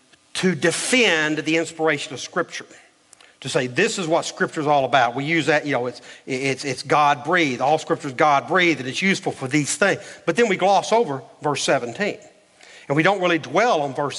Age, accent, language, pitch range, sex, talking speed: 40-59, American, English, 165-265 Hz, male, 205 wpm